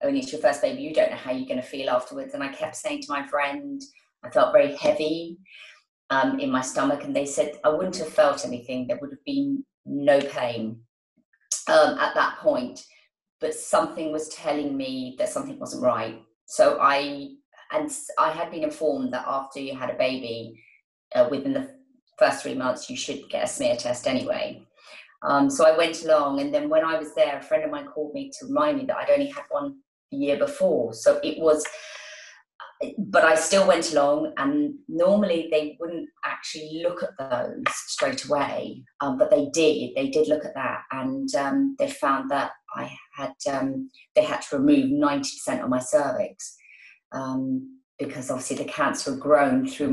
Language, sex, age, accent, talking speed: English, female, 30-49, British, 195 wpm